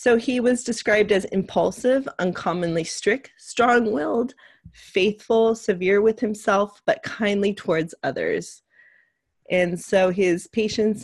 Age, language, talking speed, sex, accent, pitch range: 30-49, English, 115 wpm, female, American, 170-225 Hz